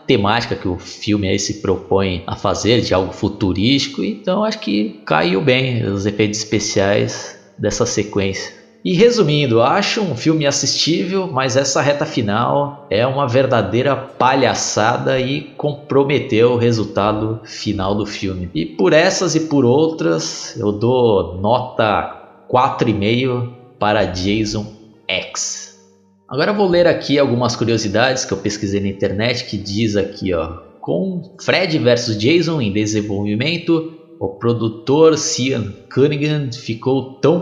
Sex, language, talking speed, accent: male, Portuguese, 130 wpm, Brazilian